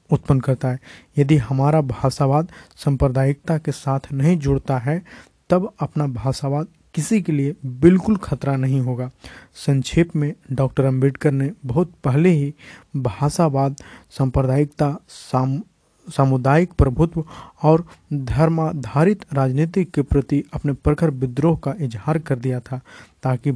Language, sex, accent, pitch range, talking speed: Hindi, male, native, 135-155 Hz, 120 wpm